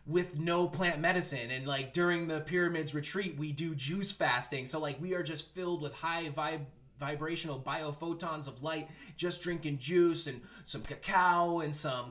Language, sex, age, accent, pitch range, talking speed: English, male, 30-49, American, 140-170 Hz, 175 wpm